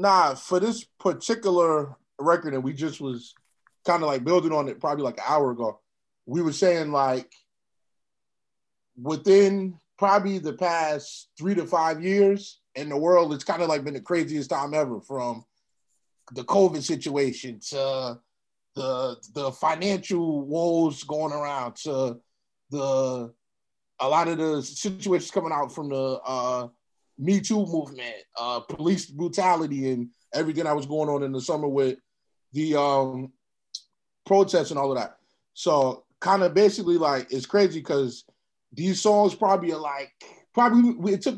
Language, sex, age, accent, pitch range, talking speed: English, male, 20-39, American, 135-185 Hz, 155 wpm